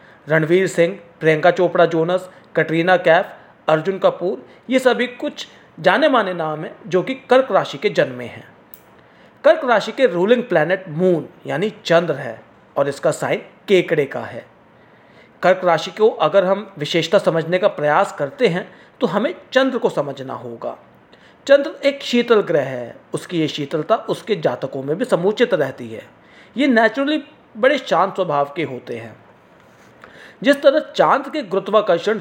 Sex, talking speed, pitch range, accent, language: male, 110 wpm, 155-225 Hz, Indian, English